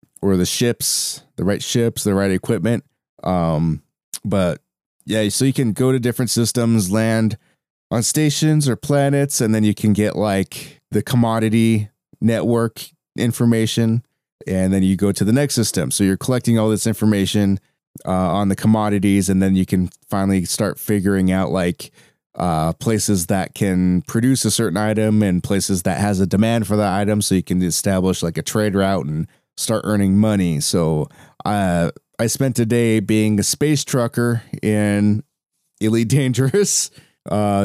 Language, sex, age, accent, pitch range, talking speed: English, male, 20-39, American, 95-115 Hz, 165 wpm